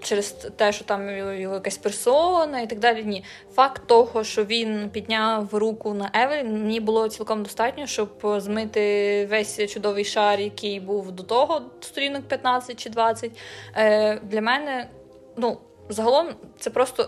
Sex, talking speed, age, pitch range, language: female, 150 wpm, 20-39, 205-230 Hz, Ukrainian